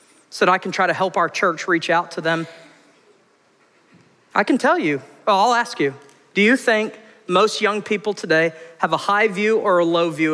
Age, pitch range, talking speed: 40-59, 170-265 Hz, 205 wpm